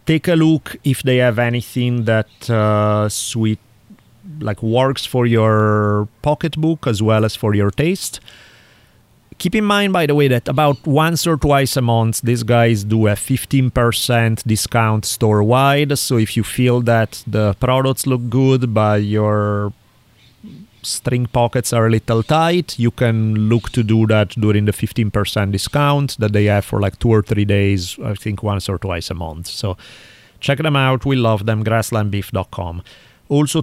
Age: 30-49